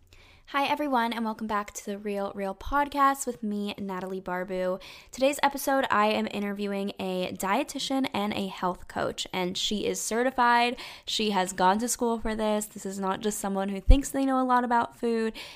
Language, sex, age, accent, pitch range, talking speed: English, female, 10-29, American, 185-245 Hz, 190 wpm